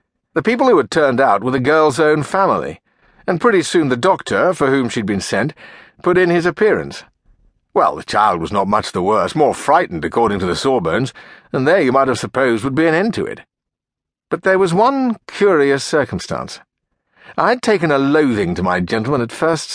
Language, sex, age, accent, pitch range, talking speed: English, male, 60-79, British, 115-165 Hz, 210 wpm